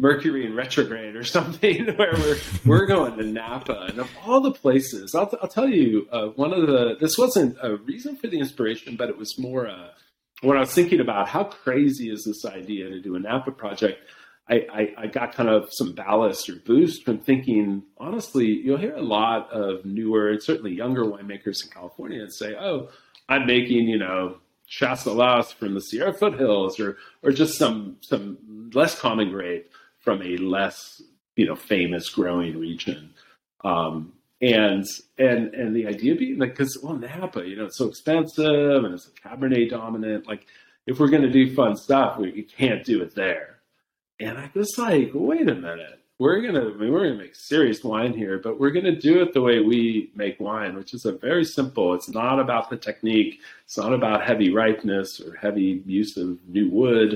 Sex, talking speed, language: male, 200 wpm, English